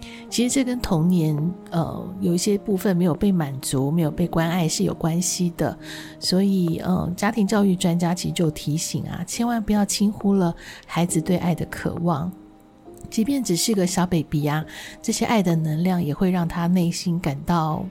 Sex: female